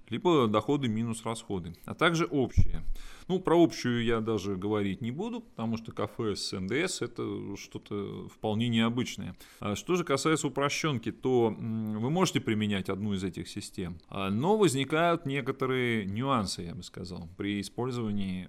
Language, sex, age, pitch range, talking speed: Russian, male, 30-49, 105-130 Hz, 145 wpm